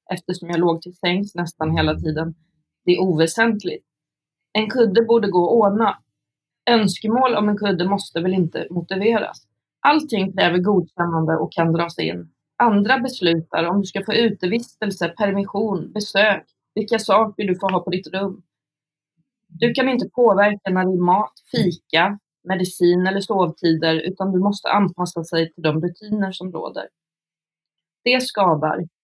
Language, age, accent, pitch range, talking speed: Swedish, 30-49, native, 170-210 Hz, 150 wpm